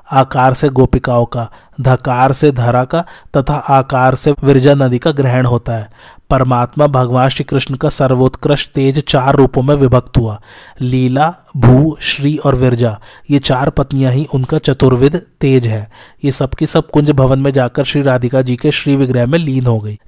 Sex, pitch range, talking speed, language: male, 125-145 Hz, 180 wpm, Hindi